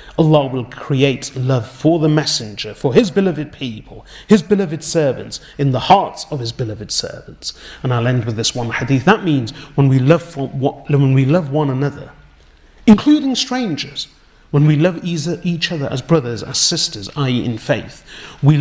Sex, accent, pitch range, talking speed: male, British, 120-160 Hz, 175 wpm